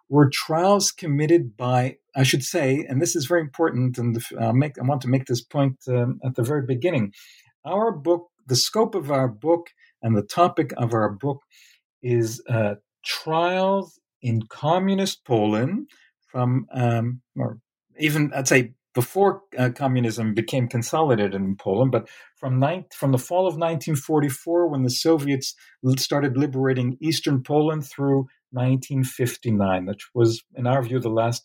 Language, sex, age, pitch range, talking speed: English, male, 50-69, 120-160 Hz, 155 wpm